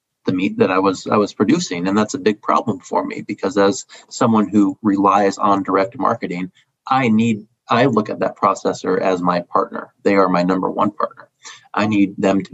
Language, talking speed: English, 205 wpm